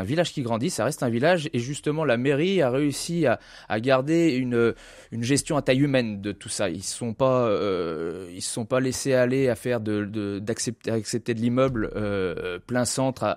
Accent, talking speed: French, 205 wpm